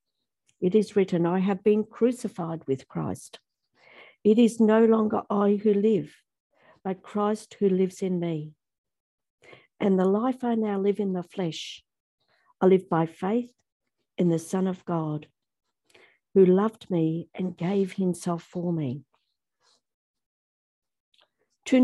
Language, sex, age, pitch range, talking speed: English, female, 50-69, 175-220 Hz, 135 wpm